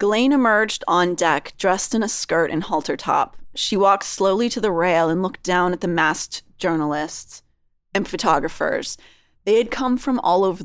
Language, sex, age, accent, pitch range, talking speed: English, female, 30-49, American, 155-195 Hz, 180 wpm